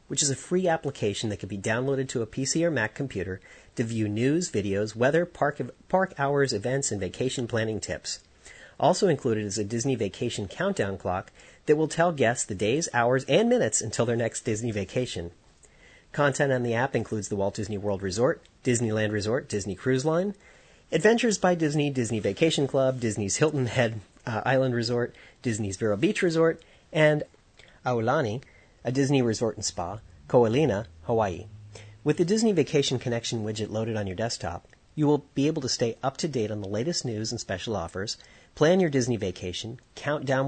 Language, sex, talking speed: English, male, 180 wpm